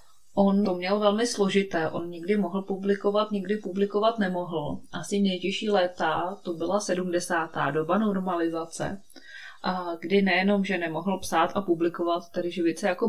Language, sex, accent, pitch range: Czech, female, native, 165-195 Hz